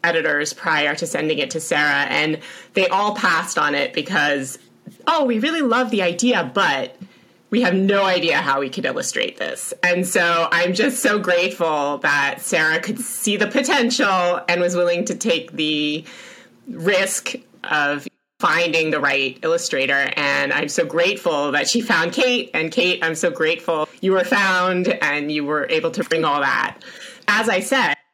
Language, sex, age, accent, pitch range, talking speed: English, female, 30-49, American, 165-225 Hz, 175 wpm